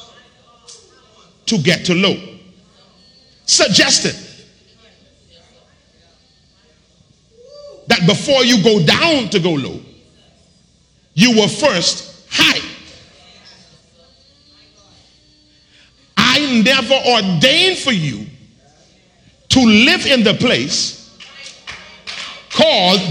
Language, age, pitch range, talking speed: English, 50-69, 185-255 Hz, 75 wpm